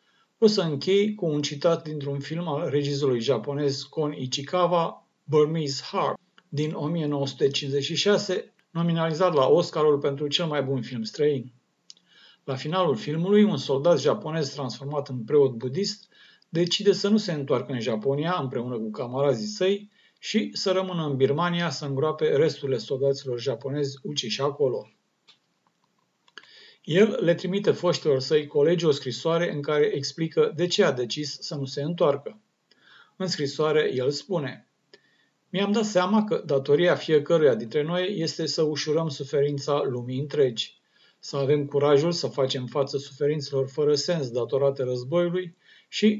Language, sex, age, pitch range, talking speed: Romanian, male, 50-69, 140-175 Hz, 140 wpm